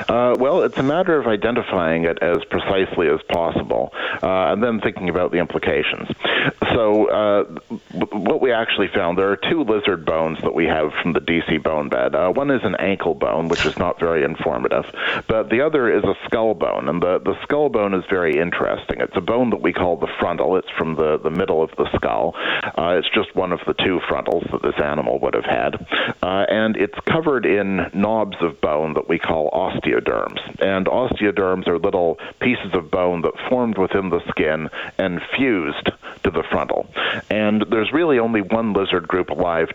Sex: male